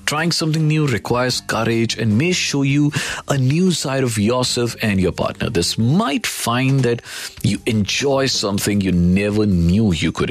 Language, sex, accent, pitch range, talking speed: Hindi, male, native, 90-130 Hz, 170 wpm